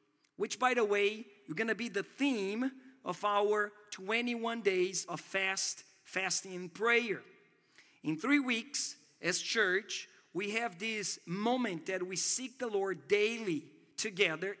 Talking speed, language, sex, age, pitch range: 145 wpm, English, male, 50-69, 185-240 Hz